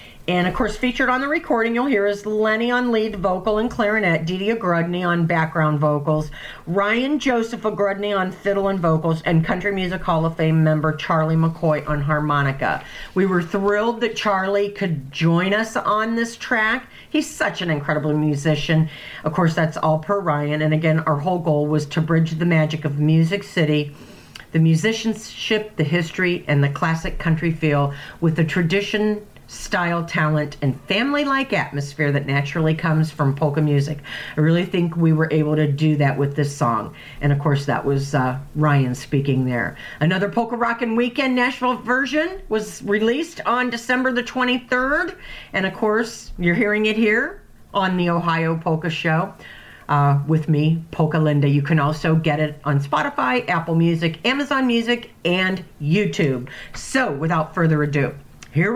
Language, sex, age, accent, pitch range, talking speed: English, female, 50-69, American, 150-215 Hz, 170 wpm